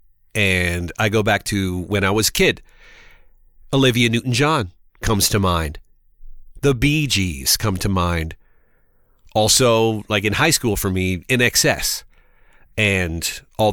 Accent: American